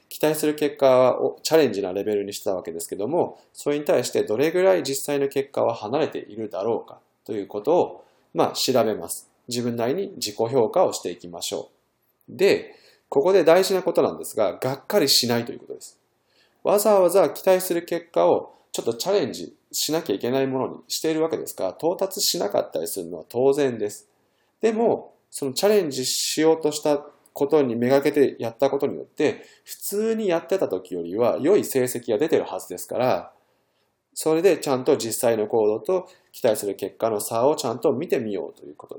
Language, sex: Japanese, male